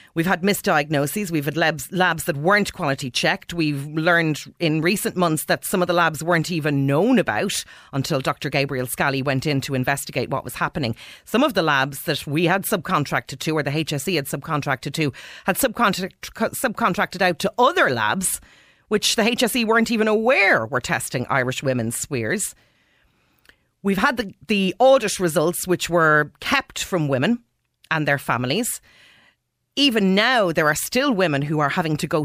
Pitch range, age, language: 145-200 Hz, 40-59, English